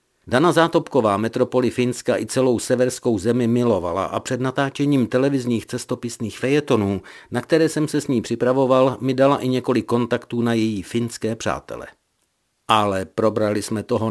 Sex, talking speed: male, 150 wpm